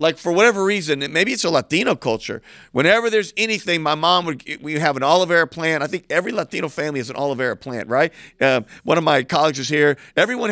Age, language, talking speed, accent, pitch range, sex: 50-69, English, 220 wpm, American, 140-180 Hz, male